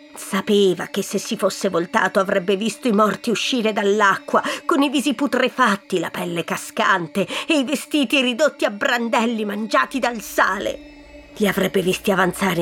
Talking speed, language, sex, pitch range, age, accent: 150 wpm, Italian, female, 200-295 Hz, 40-59, native